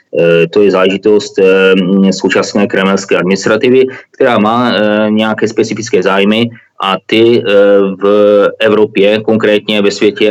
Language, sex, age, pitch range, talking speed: Czech, male, 20-39, 95-105 Hz, 105 wpm